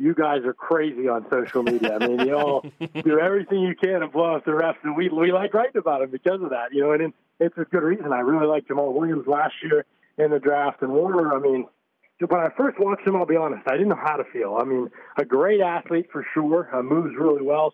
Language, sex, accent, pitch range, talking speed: English, male, American, 140-180 Hz, 255 wpm